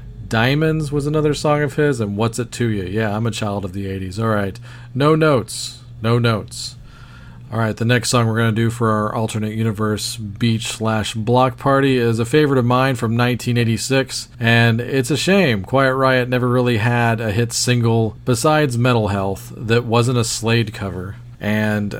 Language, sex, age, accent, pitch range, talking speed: English, male, 40-59, American, 105-120 Hz, 190 wpm